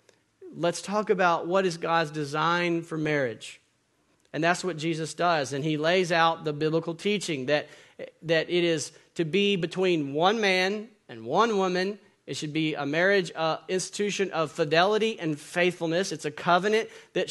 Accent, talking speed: American, 165 wpm